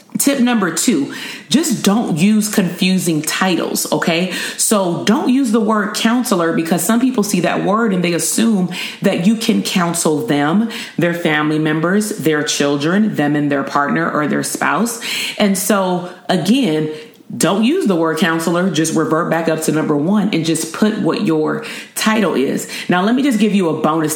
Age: 30-49